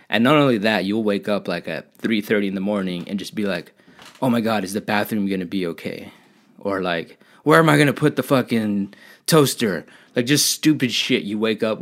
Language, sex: English, male